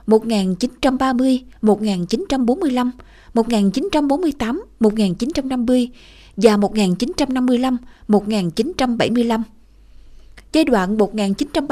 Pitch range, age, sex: 205-265 Hz, 20-39, female